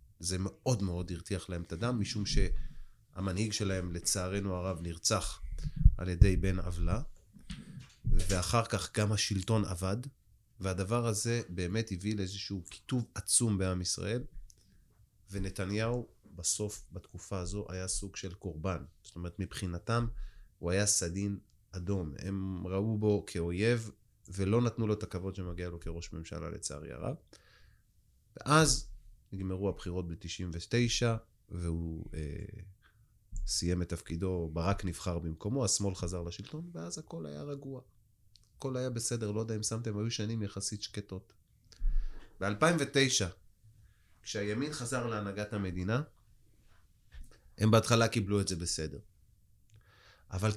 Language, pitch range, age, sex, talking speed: Hebrew, 90-110 Hz, 30-49, male, 120 wpm